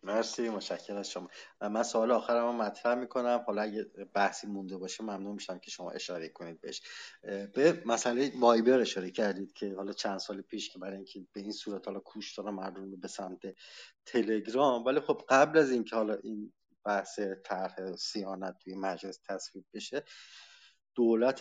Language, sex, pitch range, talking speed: English, male, 100-120 Hz, 165 wpm